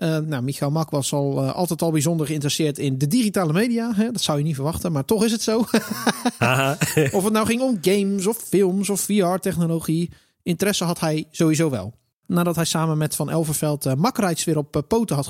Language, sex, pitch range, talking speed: Dutch, male, 155-200 Hz, 205 wpm